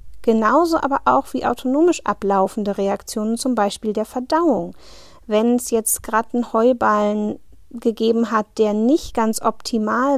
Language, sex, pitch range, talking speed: German, female, 205-270 Hz, 135 wpm